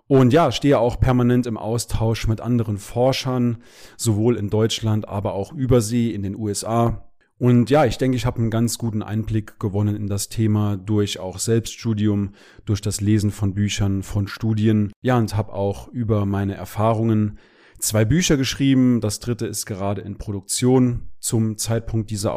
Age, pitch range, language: 30-49, 105-125 Hz, German